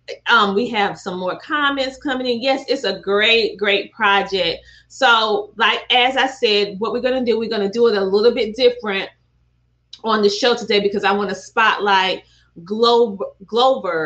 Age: 30-49